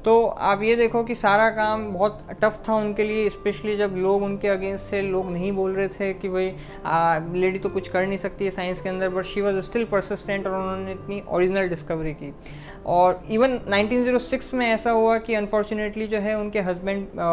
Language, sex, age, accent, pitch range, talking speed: Hindi, female, 20-39, native, 185-220 Hz, 200 wpm